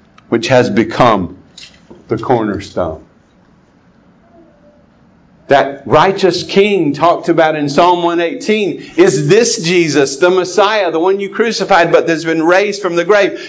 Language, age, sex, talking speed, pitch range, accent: English, 50-69, male, 130 wpm, 155-195 Hz, American